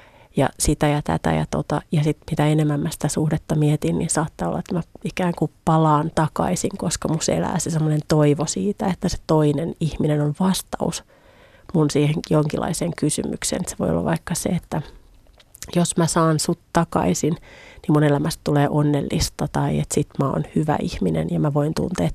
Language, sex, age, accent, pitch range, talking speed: Finnish, female, 30-49, native, 145-170 Hz, 180 wpm